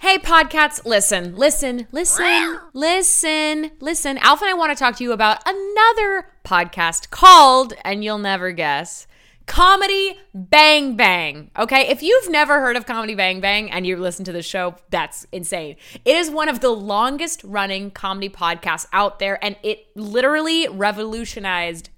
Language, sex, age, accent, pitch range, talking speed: English, female, 20-39, American, 185-295 Hz, 160 wpm